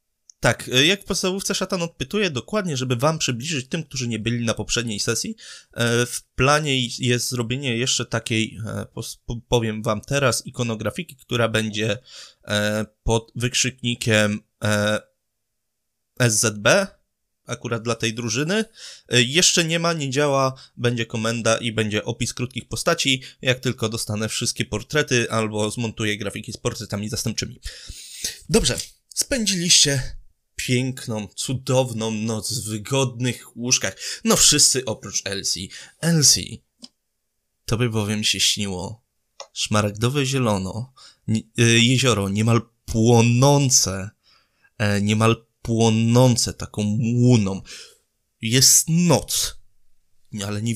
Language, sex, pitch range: Polish, male, 105-130 Hz